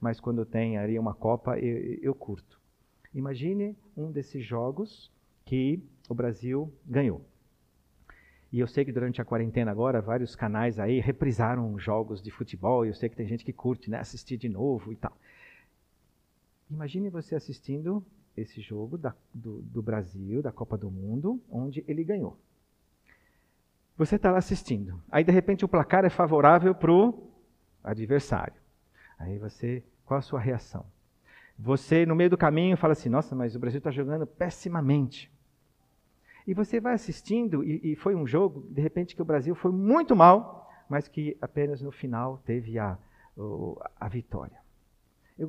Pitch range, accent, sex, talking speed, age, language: 120-185 Hz, Brazilian, male, 160 wpm, 50-69, Portuguese